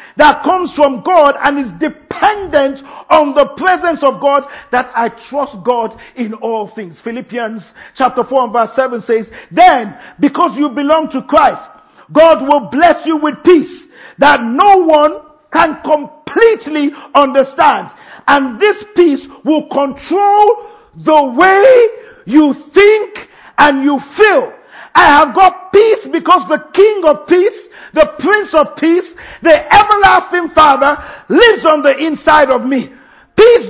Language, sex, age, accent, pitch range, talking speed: English, male, 50-69, Nigerian, 270-345 Hz, 140 wpm